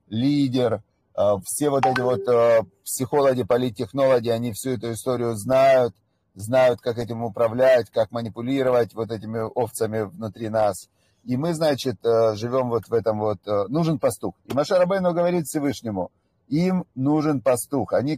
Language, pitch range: Russian, 115-150 Hz